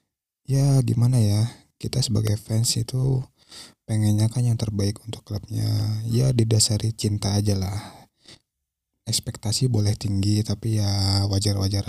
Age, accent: 20-39, native